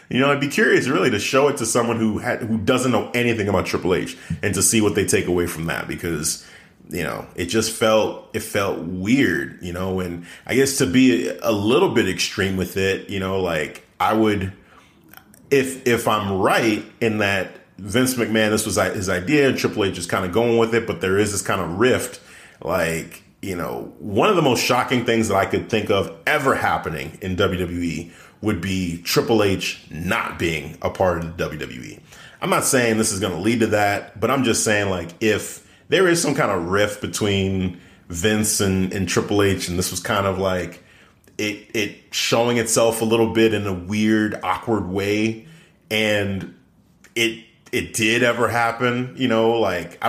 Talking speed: 200 wpm